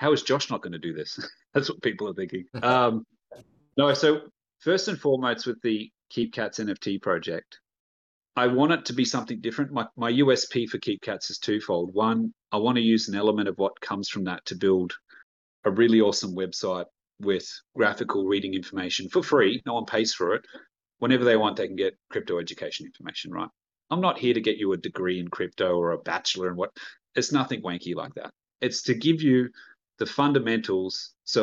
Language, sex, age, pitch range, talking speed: English, male, 30-49, 100-125 Hz, 200 wpm